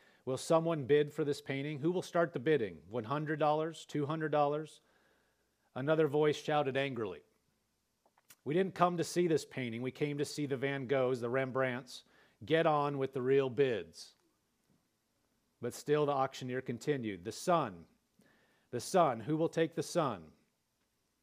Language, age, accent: English, 40-59, American